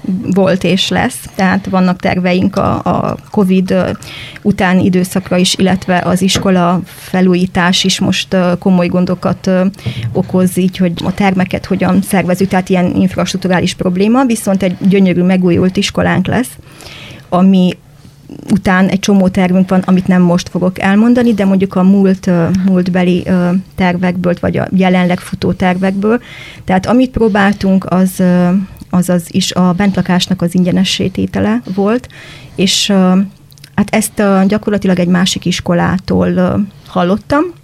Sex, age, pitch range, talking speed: female, 20-39, 180-195 Hz, 135 wpm